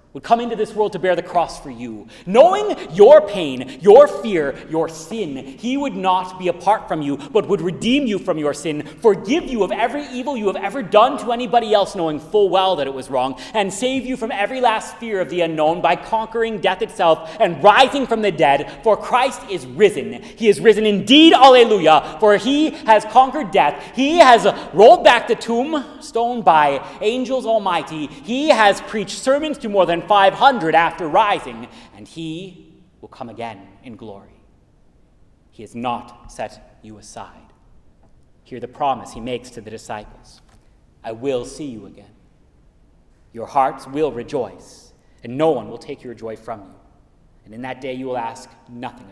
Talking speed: 185 wpm